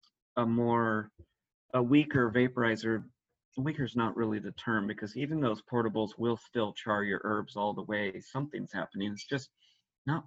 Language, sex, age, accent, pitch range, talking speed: English, male, 40-59, American, 120-155 Hz, 165 wpm